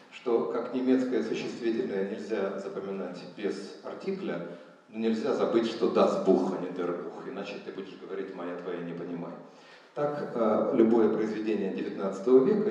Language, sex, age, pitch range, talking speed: Russian, male, 40-59, 100-160 Hz, 145 wpm